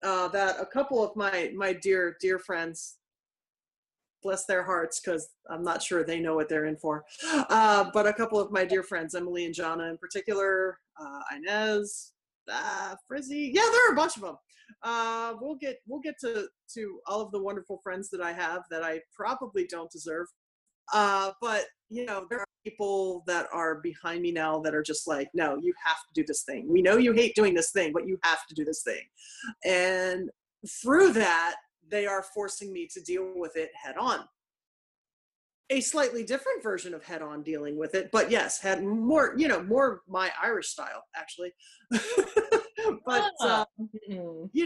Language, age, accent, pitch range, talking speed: English, 30-49, American, 170-235 Hz, 190 wpm